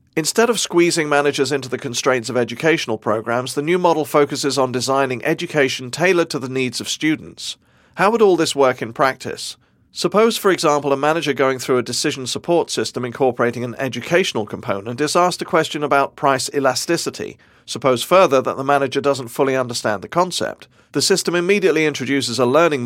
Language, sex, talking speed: English, male, 180 wpm